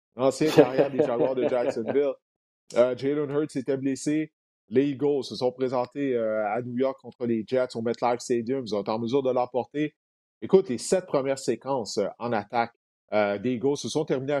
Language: French